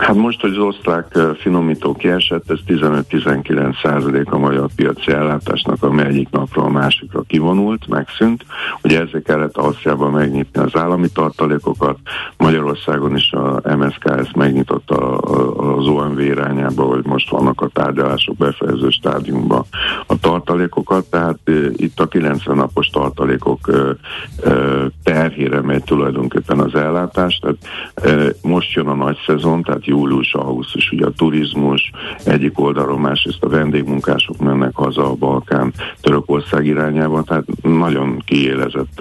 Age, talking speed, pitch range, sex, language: 60-79, 125 wpm, 70-80 Hz, male, Hungarian